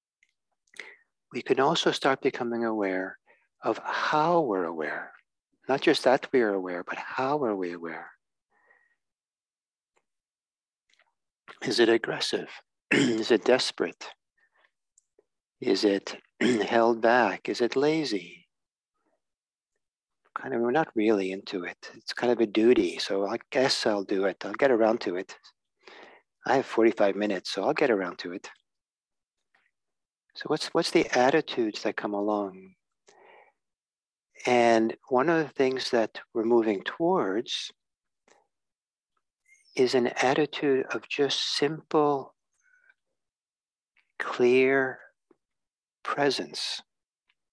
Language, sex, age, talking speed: English, male, 60-79, 115 wpm